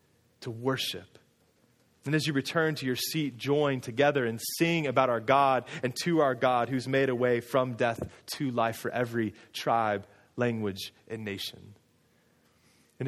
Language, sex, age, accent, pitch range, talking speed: English, male, 30-49, American, 125-150 Hz, 160 wpm